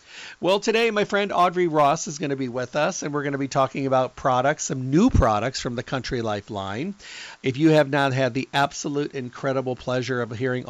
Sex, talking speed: male, 220 wpm